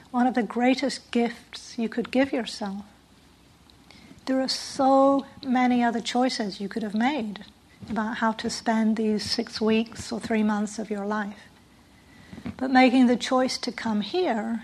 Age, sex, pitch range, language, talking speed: 60-79, female, 215-255 Hz, English, 160 wpm